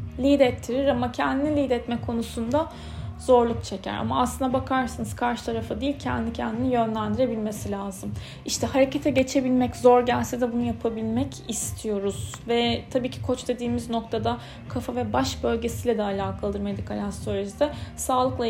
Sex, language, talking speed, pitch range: female, Turkish, 135 wpm, 215-255 Hz